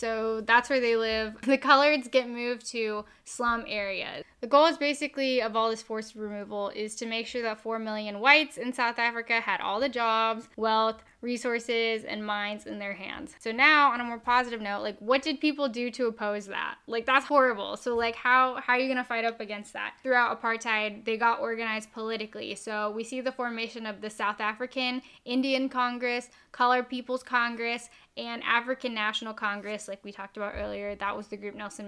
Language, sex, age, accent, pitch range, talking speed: English, female, 10-29, American, 215-250 Hz, 200 wpm